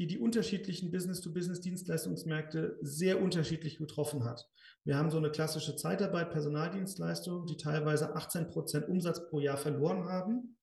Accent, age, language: German, 40-59, German